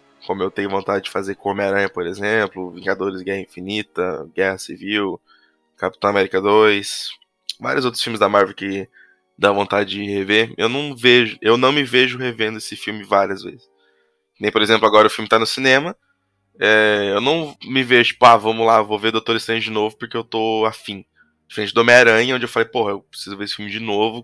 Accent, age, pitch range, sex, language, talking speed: Brazilian, 20-39, 100-120 Hz, male, Portuguese, 200 wpm